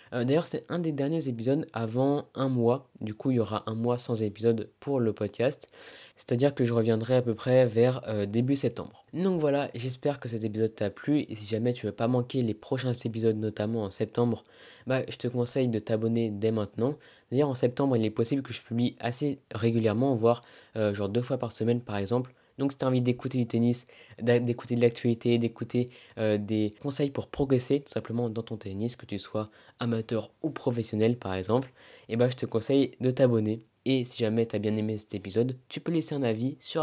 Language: French